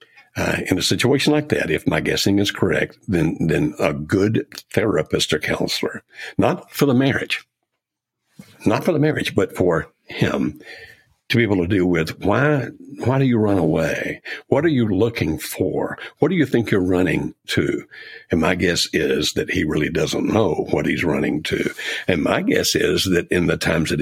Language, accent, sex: English, American, male